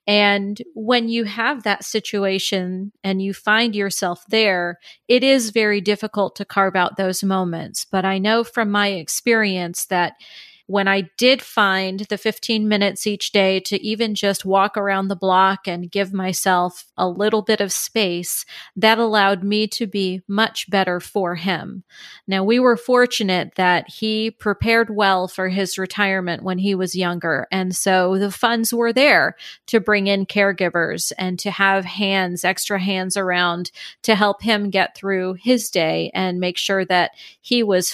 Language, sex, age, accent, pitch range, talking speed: English, female, 30-49, American, 185-220 Hz, 165 wpm